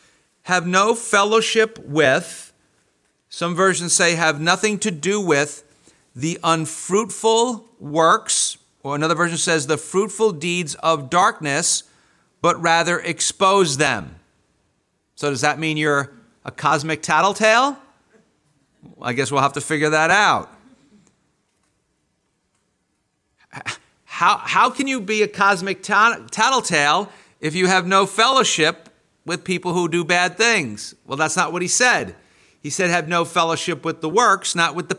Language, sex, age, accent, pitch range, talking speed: English, male, 50-69, American, 155-205 Hz, 135 wpm